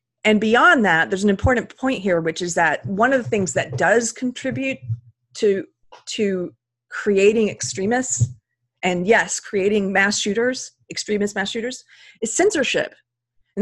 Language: English